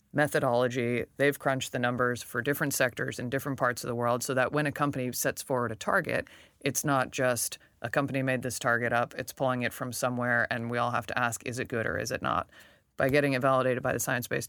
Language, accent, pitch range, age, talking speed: English, American, 125-140 Hz, 20-39, 235 wpm